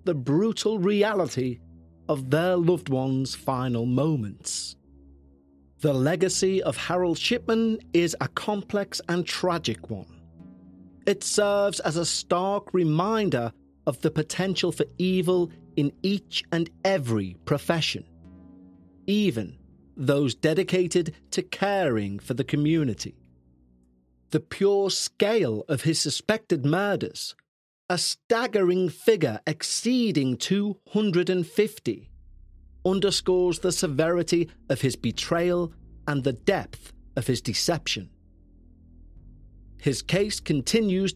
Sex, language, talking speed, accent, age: male, English, 105 wpm, British, 40-59